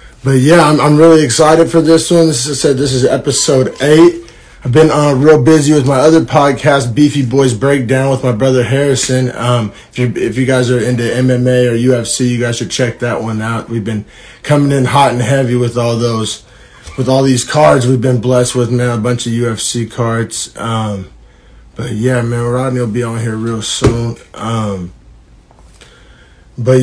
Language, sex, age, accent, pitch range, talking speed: English, male, 30-49, American, 125-155 Hz, 190 wpm